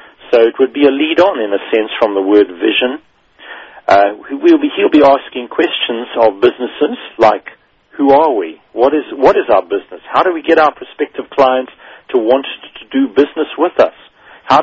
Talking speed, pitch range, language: 180 wpm, 110-165 Hz, English